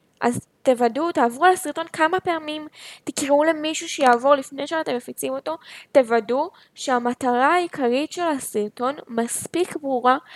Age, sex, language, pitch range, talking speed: 10-29, female, Hebrew, 245-310 Hz, 115 wpm